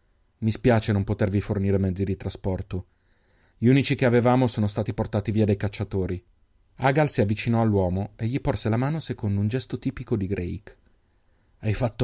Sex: male